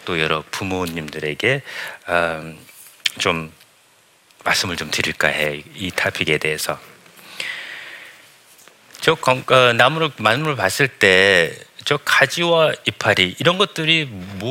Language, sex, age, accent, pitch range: Korean, male, 40-59, native, 95-140 Hz